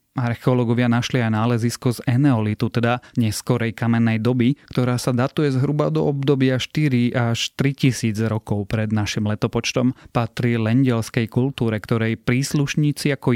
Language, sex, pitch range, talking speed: Slovak, male, 110-135 Hz, 130 wpm